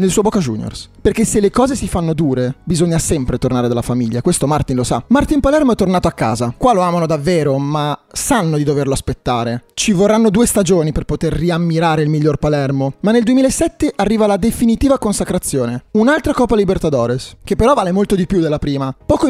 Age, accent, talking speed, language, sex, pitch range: 30-49, native, 200 wpm, Italian, male, 150-220 Hz